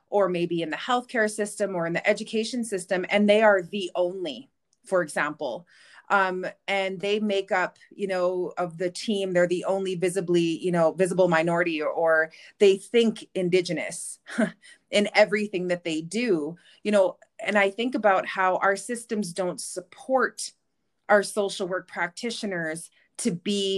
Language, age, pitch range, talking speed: English, 30-49, 175-215 Hz, 155 wpm